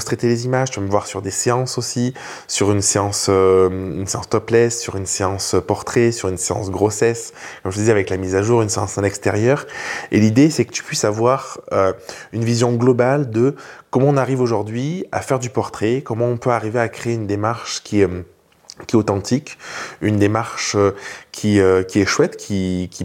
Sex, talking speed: male, 210 wpm